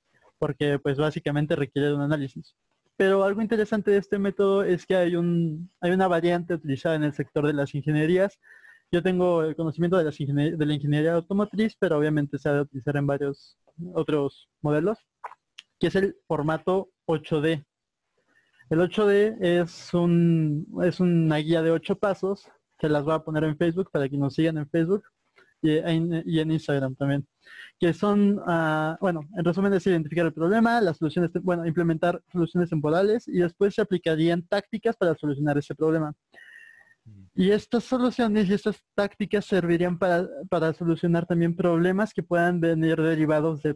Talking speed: 165 wpm